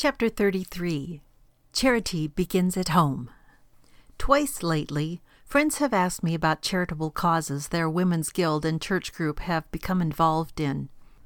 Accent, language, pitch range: American, English, 165-215 Hz